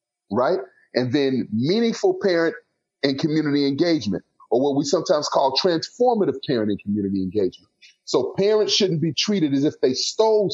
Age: 30-49